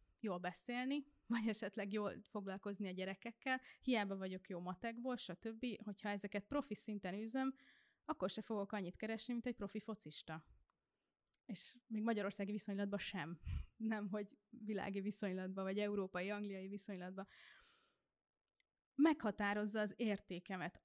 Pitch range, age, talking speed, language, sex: 195-230 Hz, 20-39, 120 wpm, Hungarian, female